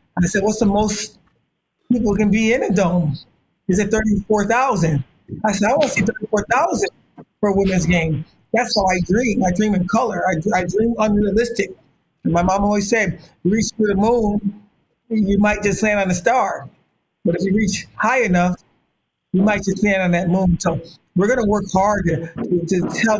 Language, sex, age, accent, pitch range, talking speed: English, male, 50-69, American, 185-225 Hz, 195 wpm